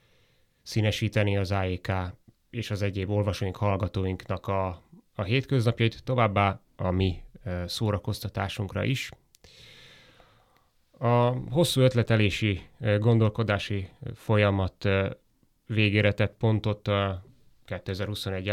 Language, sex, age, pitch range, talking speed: Hungarian, male, 30-49, 95-115 Hz, 80 wpm